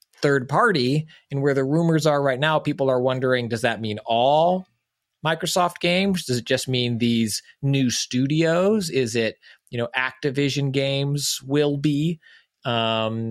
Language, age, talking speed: English, 30-49, 155 wpm